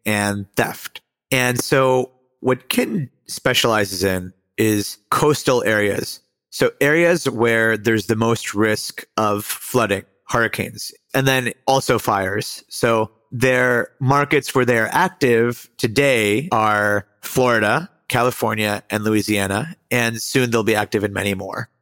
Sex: male